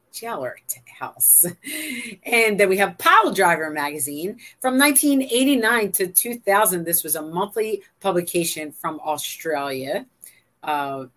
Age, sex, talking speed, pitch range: 40-59, female, 115 wpm, 155-200 Hz